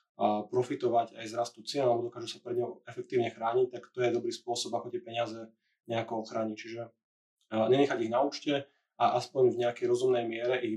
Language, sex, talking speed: Slovak, male, 200 wpm